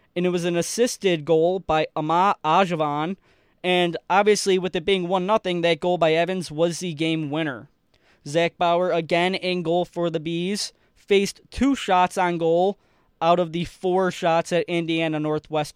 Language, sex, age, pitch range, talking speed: English, male, 20-39, 165-190 Hz, 170 wpm